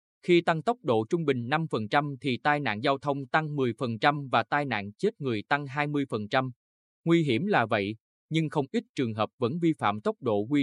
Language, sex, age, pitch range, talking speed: Vietnamese, male, 20-39, 115-150 Hz, 205 wpm